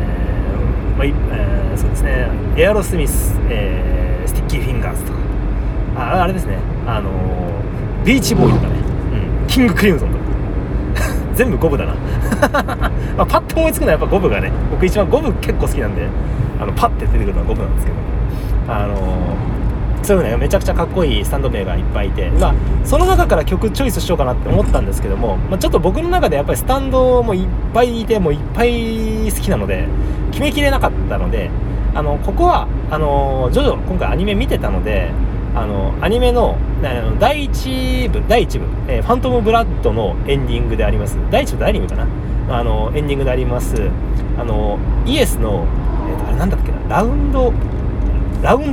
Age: 30-49